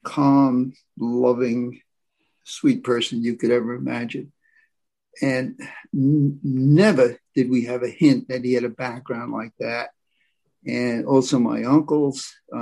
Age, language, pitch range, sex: 60-79, English, 130-165 Hz, male